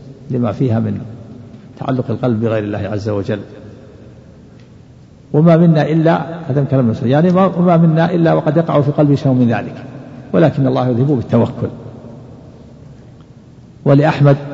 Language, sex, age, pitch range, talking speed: Arabic, male, 50-69, 115-135 Hz, 130 wpm